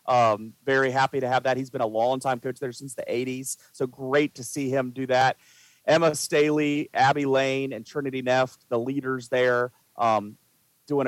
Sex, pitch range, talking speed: male, 120-140 Hz, 190 wpm